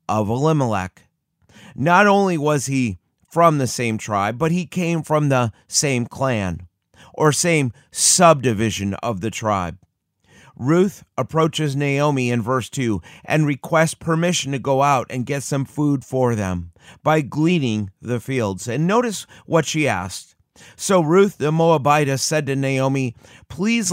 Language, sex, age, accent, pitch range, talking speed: English, male, 30-49, American, 115-160 Hz, 145 wpm